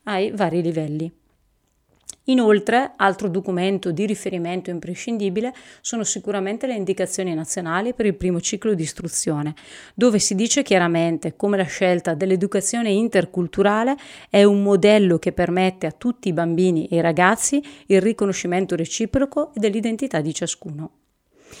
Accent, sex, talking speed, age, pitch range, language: native, female, 130 wpm, 30-49, 175-210 Hz, Italian